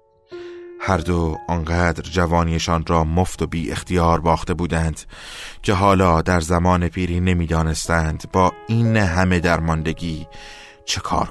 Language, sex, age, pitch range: Persian, male, 30-49, 85-95 Hz